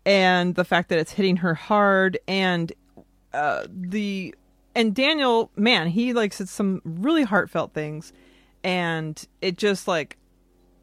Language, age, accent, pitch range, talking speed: English, 30-49, American, 165-215 Hz, 140 wpm